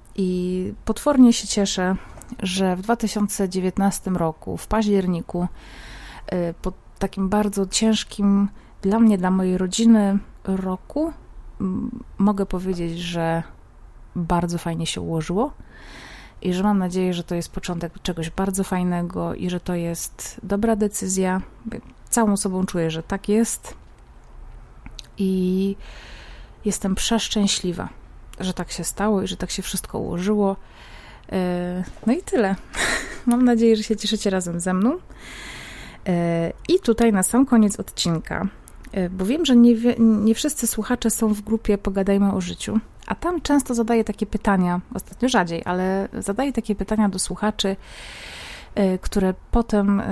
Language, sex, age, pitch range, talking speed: Polish, female, 30-49, 185-220 Hz, 135 wpm